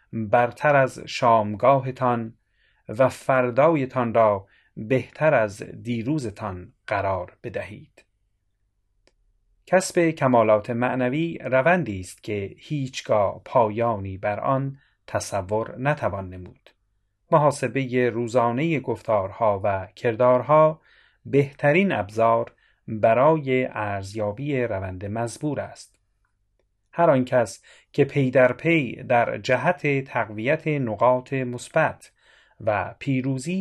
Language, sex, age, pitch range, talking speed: Persian, male, 30-49, 105-145 Hz, 90 wpm